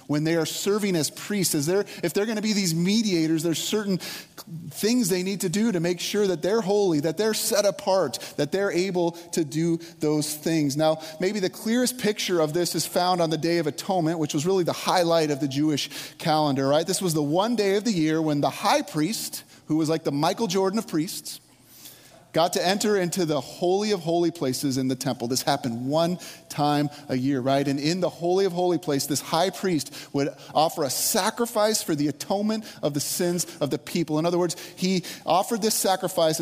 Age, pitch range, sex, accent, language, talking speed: 30-49, 145-185 Hz, male, American, English, 215 wpm